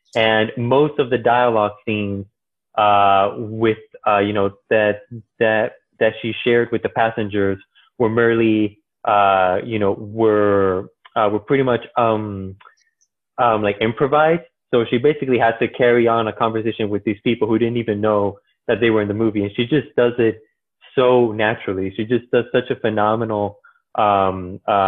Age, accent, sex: 20-39, American, male